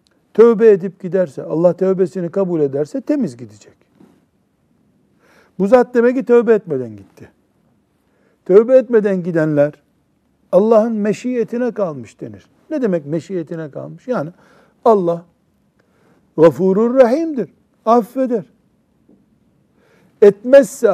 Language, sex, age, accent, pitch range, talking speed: Turkish, male, 60-79, native, 155-225 Hz, 90 wpm